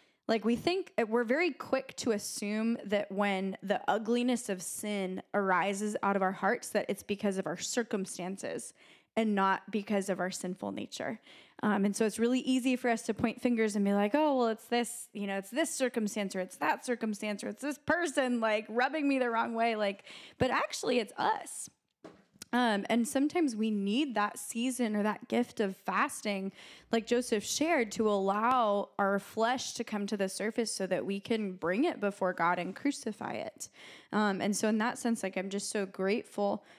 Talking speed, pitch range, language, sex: 195 wpm, 200-240 Hz, English, female